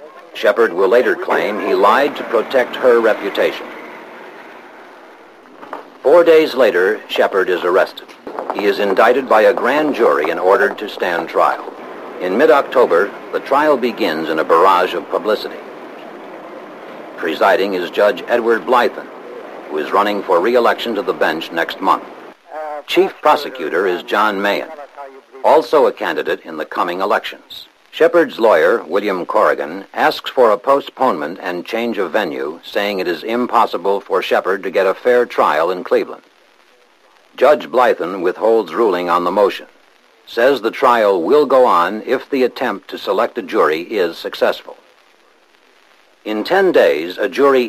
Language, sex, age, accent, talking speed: English, male, 60-79, American, 145 wpm